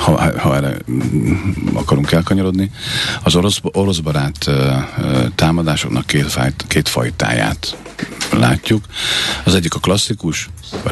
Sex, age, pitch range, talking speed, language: male, 50-69, 70-100 Hz, 115 wpm, Hungarian